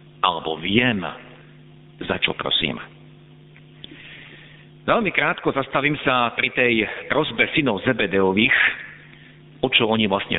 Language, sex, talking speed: Slovak, male, 100 wpm